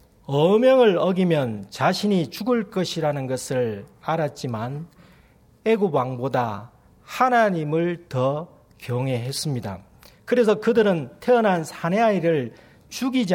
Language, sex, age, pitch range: Korean, male, 40-59, 130-205 Hz